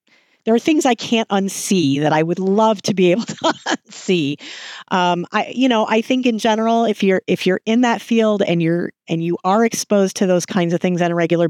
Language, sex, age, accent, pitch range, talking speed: English, female, 40-59, American, 160-215 Hz, 230 wpm